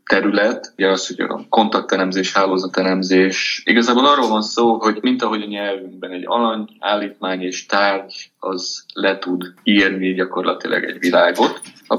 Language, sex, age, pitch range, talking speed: Hungarian, male, 20-39, 95-110 Hz, 140 wpm